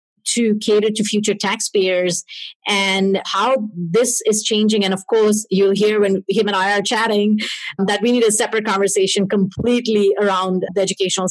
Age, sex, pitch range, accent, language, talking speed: 30-49, female, 190-220 Hz, Indian, English, 165 wpm